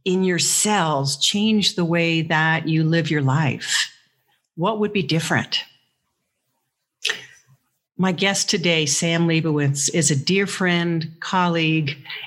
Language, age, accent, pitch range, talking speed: English, 50-69, American, 145-185 Hz, 120 wpm